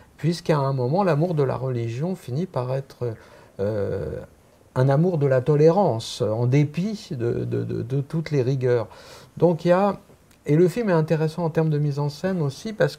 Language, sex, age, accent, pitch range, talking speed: French, male, 50-69, French, 115-160 Hz, 190 wpm